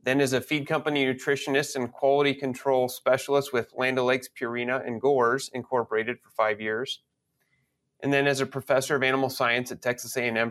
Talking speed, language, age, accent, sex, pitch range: 175 wpm, English, 30-49, American, male, 120-140 Hz